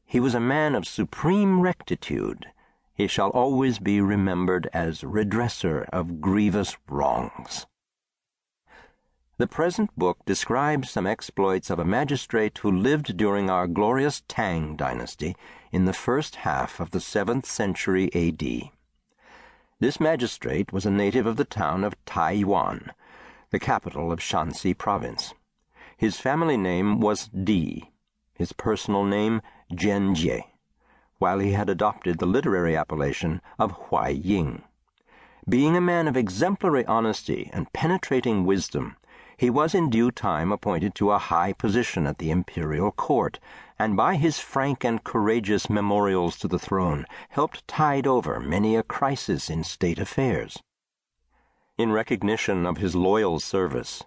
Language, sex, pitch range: English, male, 95-120 Hz